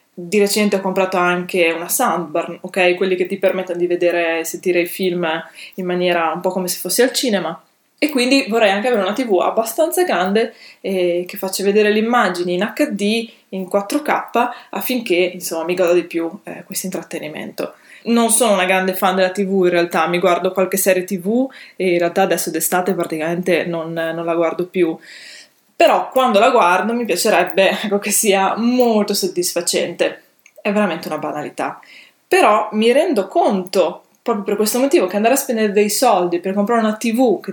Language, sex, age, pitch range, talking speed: Italian, female, 20-39, 175-215 Hz, 175 wpm